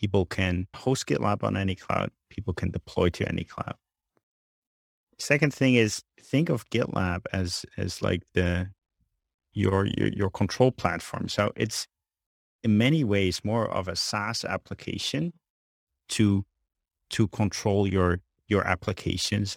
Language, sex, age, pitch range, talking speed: English, male, 30-49, 90-110 Hz, 135 wpm